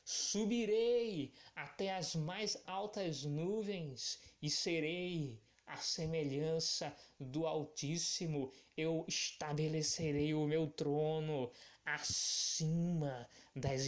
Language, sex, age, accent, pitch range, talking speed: Portuguese, male, 20-39, Brazilian, 130-170 Hz, 80 wpm